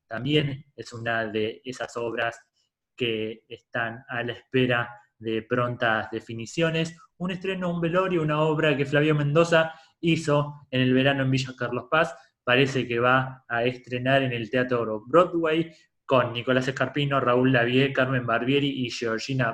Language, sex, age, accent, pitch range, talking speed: Spanish, male, 20-39, Argentinian, 120-150 Hz, 150 wpm